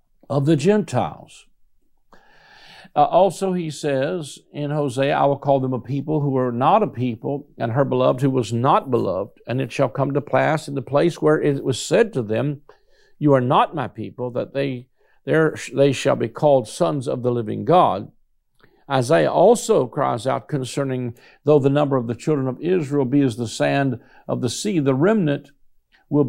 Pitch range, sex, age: 125-155 Hz, male, 60-79